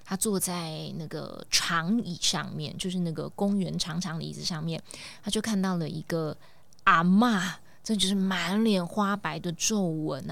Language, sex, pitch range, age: Chinese, female, 170-210 Hz, 20-39